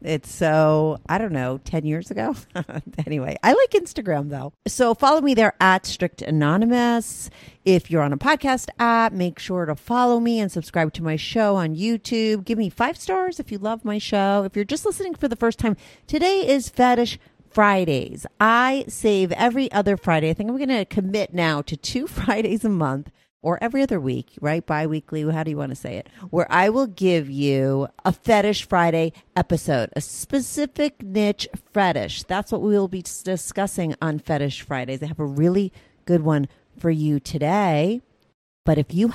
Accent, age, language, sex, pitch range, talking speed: American, 40-59, English, female, 155-230 Hz, 190 wpm